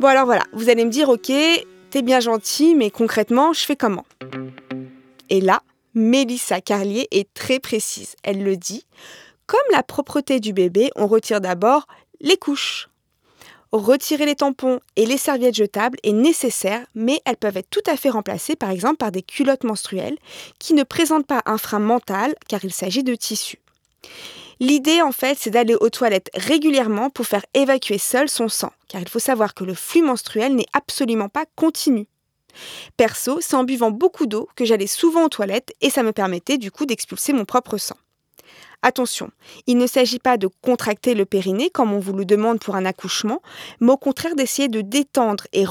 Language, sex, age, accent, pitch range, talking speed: French, female, 20-39, French, 210-275 Hz, 185 wpm